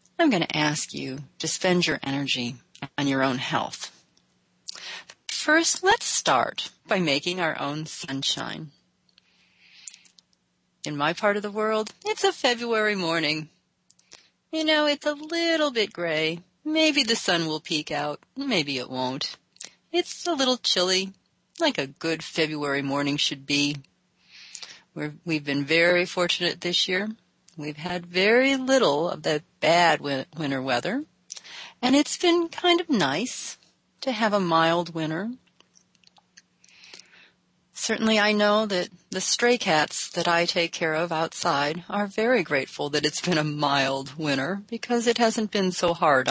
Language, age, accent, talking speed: English, 40-59, American, 145 wpm